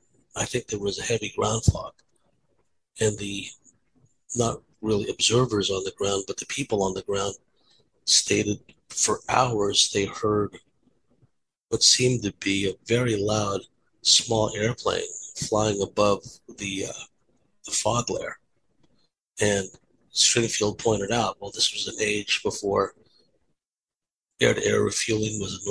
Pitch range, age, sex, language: 100-120 Hz, 50-69, male, English